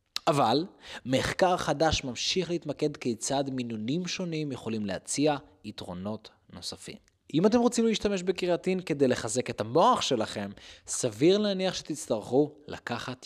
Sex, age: male, 20-39